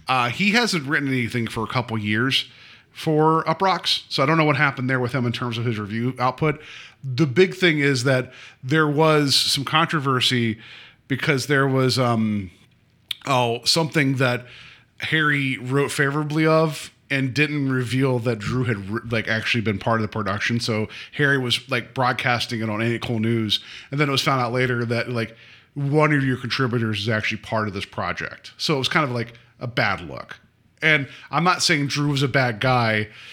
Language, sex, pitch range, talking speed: English, male, 115-140 Hz, 190 wpm